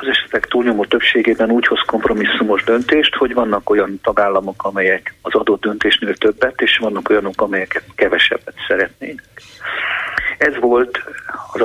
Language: Hungarian